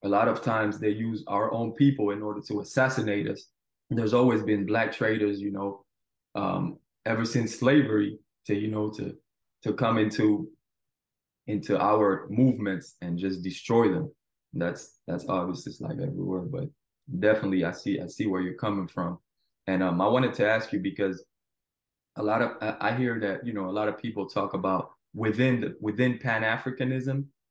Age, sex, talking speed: 20-39, male, 175 wpm